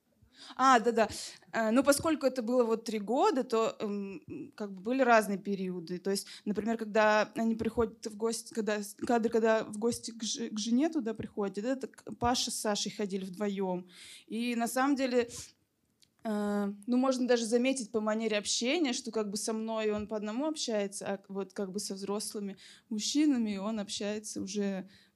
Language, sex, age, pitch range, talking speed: Russian, female, 20-39, 205-245 Hz, 165 wpm